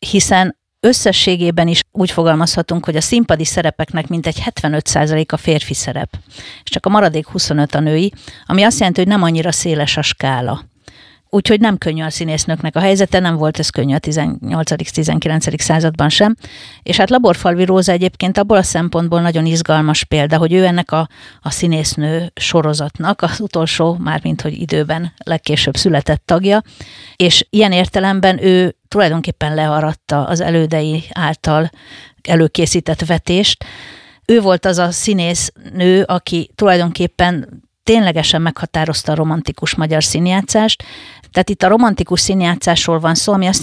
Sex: female